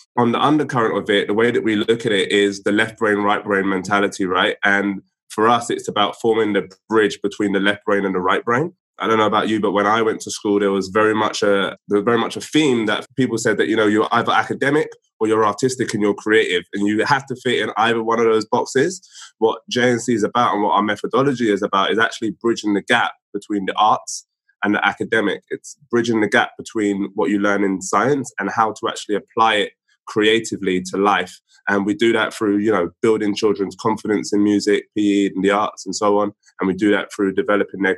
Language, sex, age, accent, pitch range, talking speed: English, male, 20-39, British, 100-115 Hz, 235 wpm